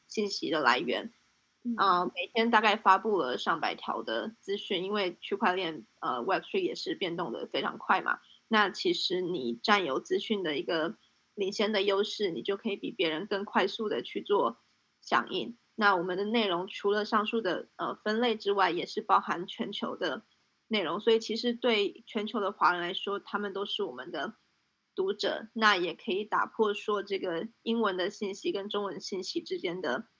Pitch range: 195-235 Hz